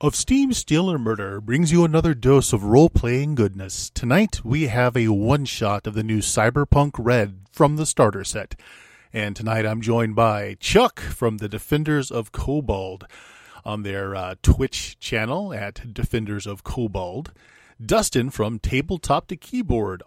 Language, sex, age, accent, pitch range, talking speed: English, male, 40-59, American, 105-140 Hz, 150 wpm